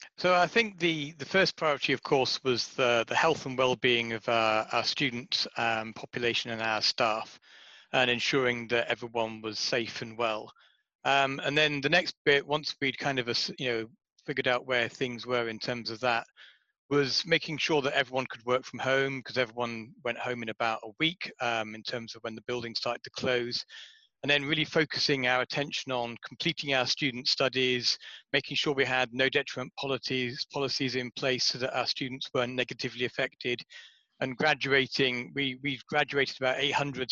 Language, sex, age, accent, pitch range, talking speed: English, male, 40-59, British, 120-140 Hz, 185 wpm